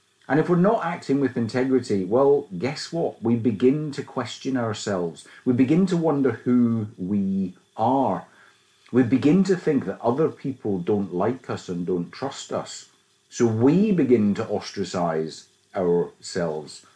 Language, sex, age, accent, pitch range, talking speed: English, male, 50-69, British, 100-140 Hz, 150 wpm